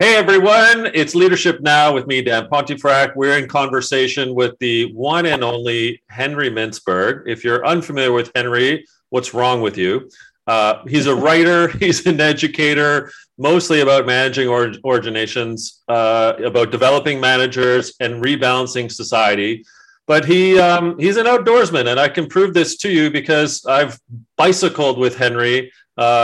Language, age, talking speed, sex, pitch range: English, 40-59, 150 wpm, male, 120-150 Hz